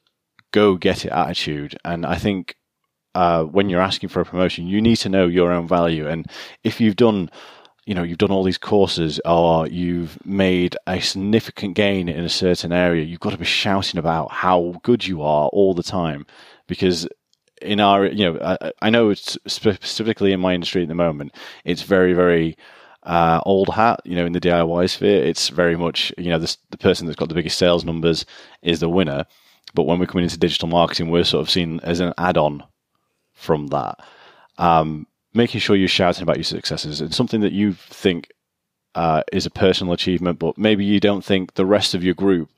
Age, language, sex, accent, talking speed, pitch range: 30-49, English, male, British, 200 wpm, 85-95 Hz